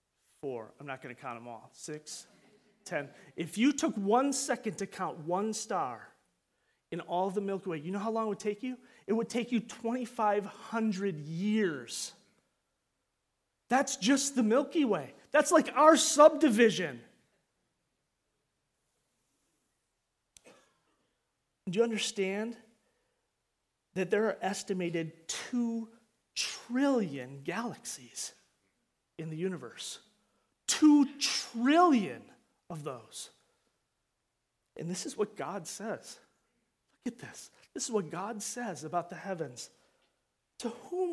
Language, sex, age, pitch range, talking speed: English, male, 30-49, 175-255 Hz, 125 wpm